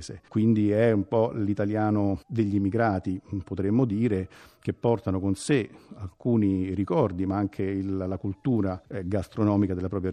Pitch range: 95-115 Hz